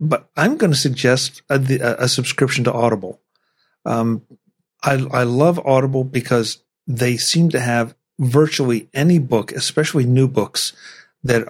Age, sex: 50-69, male